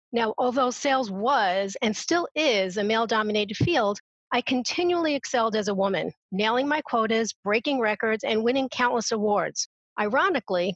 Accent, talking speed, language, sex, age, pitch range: American, 145 wpm, English, female, 40-59, 195-250 Hz